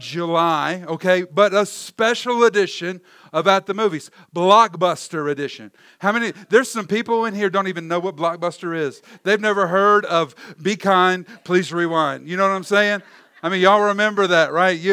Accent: American